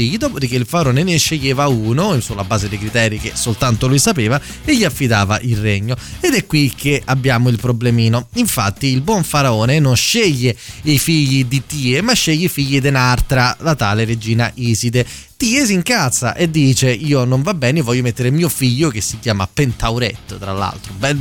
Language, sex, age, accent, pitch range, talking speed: Italian, male, 20-39, native, 115-155 Hz, 185 wpm